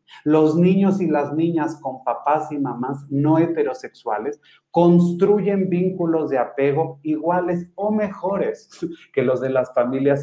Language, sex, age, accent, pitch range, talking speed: Spanish, male, 30-49, Mexican, 125-160 Hz, 135 wpm